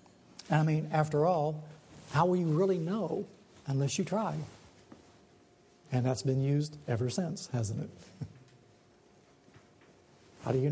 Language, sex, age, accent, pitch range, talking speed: English, male, 60-79, American, 135-175 Hz, 130 wpm